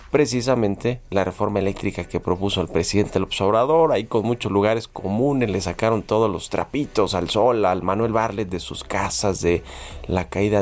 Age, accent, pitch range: 30-49, Mexican, 95-120 Hz